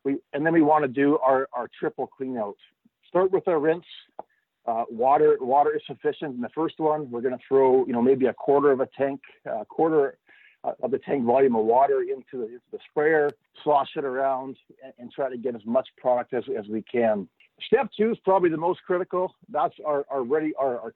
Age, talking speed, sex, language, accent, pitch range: 50-69, 220 wpm, male, English, American, 125-165 Hz